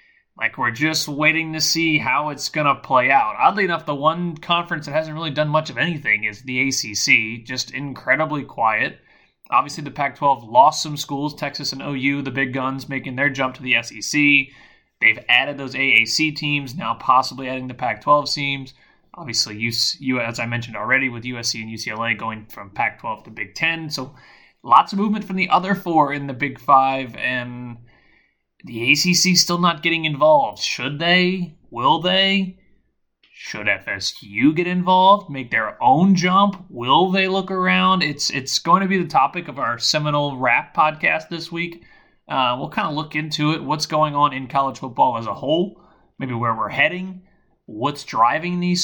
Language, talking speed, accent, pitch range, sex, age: English, 180 wpm, American, 130-170 Hz, male, 20-39